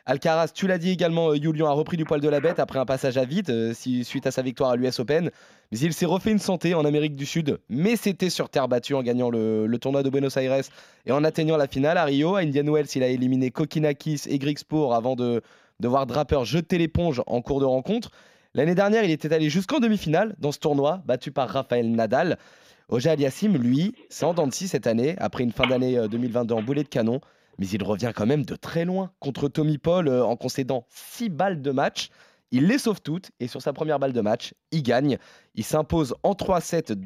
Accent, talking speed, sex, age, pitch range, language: French, 225 wpm, male, 20-39, 130-170 Hz, French